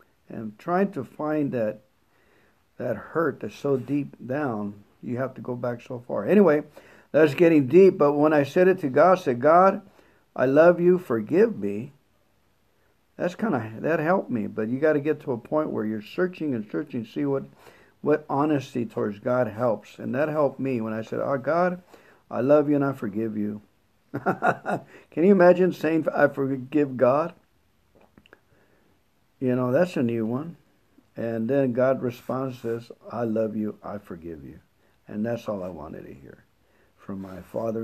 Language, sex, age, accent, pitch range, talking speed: English, male, 50-69, American, 115-175 Hz, 180 wpm